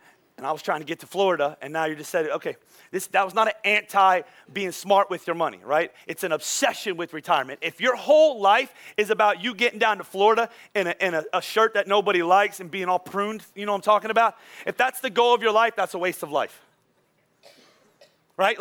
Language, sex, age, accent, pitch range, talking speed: English, male, 30-49, American, 195-245 Hz, 240 wpm